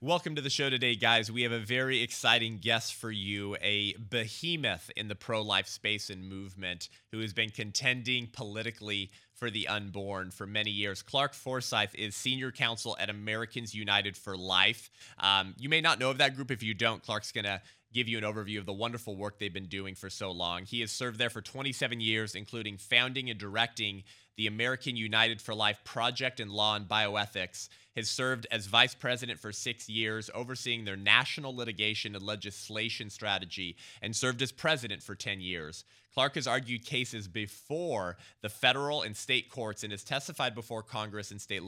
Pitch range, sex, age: 105-125 Hz, male, 20-39